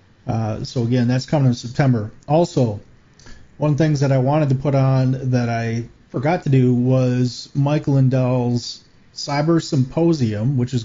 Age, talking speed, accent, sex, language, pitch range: 40-59, 165 wpm, American, male, English, 120-140 Hz